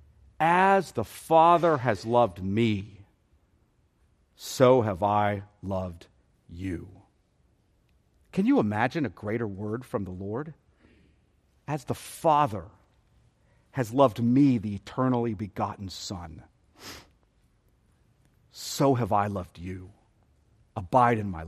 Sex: male